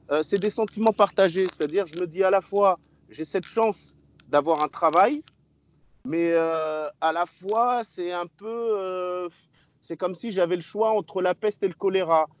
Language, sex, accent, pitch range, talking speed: French, male, French, 140-190 Hz, 190 wpm